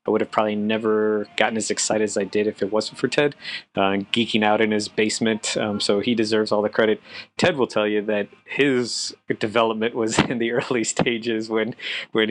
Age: 30-49